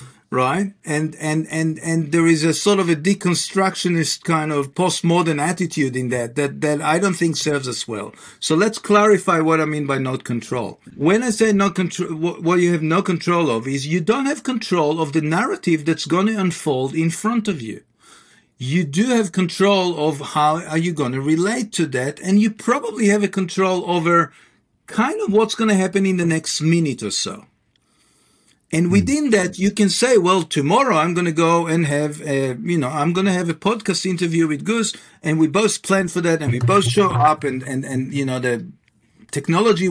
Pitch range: 150-195 Hz